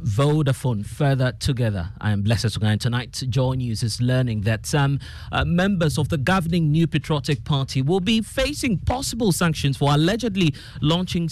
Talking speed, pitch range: 170 wpm, 115-160 Hz